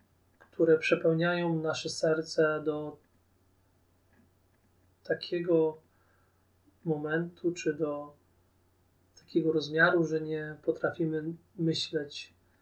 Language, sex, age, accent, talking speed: Polish, male, 30-49, native, 70 wpm